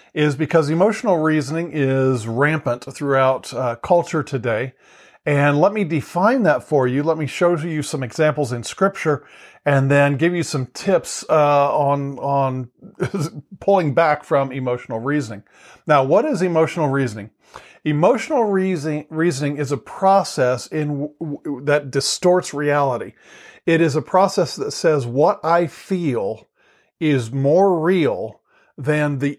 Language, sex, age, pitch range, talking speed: English, male, 40-59, 140-170 Hz, 145 wpm